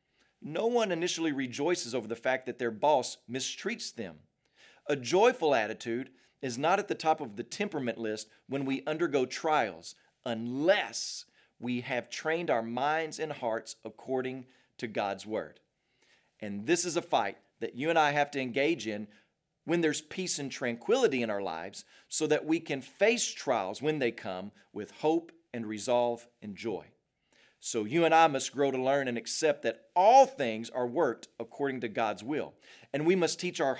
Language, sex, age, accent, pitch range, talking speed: English, male, 40-59, American, 115-155 Hz, 180 wpm